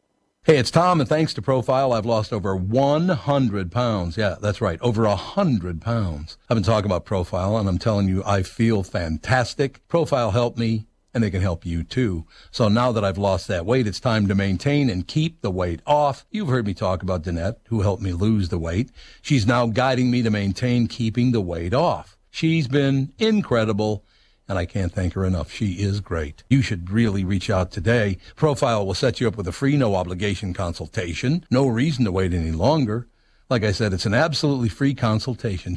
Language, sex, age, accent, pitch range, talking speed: English, male, 60-79, American, 95-130 Hz, 200 wpm